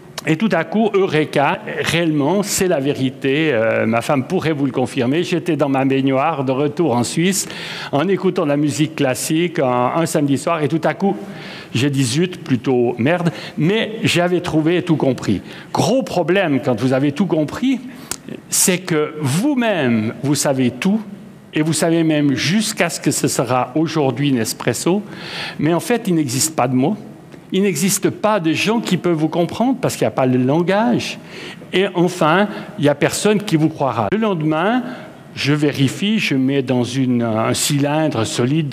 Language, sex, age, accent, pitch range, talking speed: French, male, 60-79, French, 135-180 Hz, 180 wpm